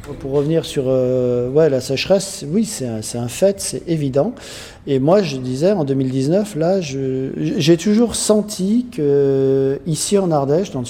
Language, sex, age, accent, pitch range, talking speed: French, male, 40-59, French, 125-150 Hz, 170 wpm